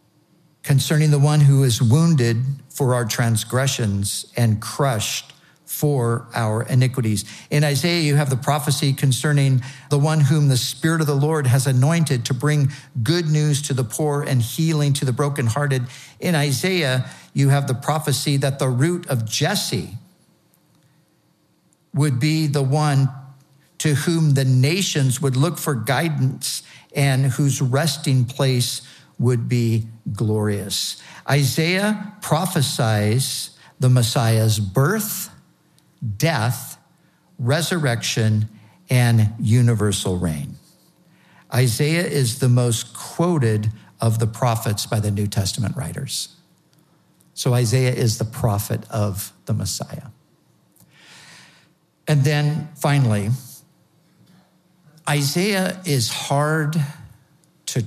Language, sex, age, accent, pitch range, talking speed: English, male, 50-69, American, 120-150 Hz, 115 wpm